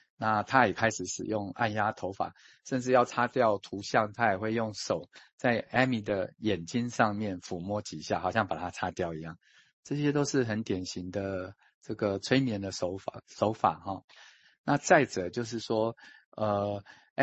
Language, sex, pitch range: Chinese, male, 95-120 Hz